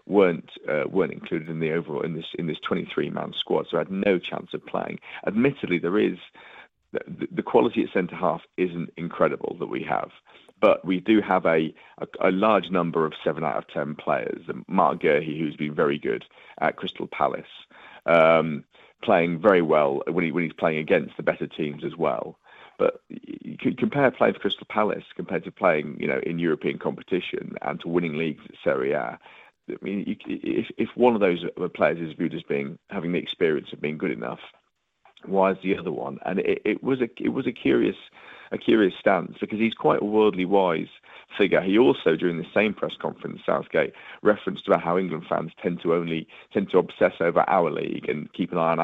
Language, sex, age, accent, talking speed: English, male, 40-59, British, 205 wpm